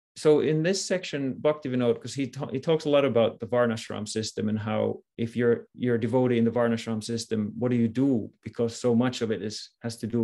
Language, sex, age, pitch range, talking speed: English, male, 30-49, 115-135 Hz, 235 wpm